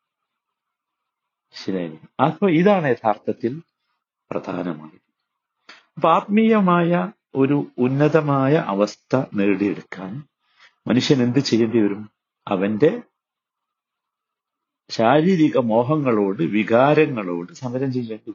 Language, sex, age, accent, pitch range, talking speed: Malayalam, male, 50-69, native, 115-160 Hz, 70 wpm